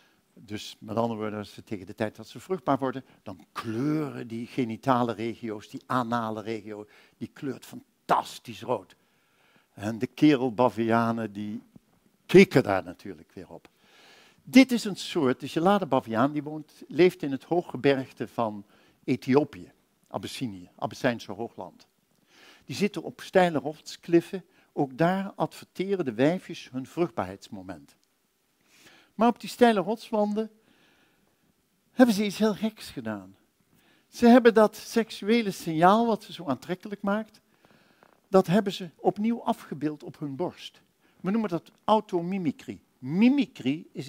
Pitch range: 125-205 Hz